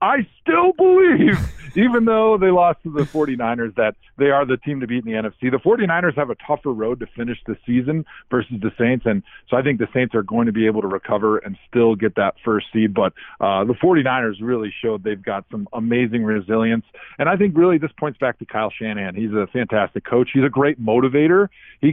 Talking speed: 225 wpm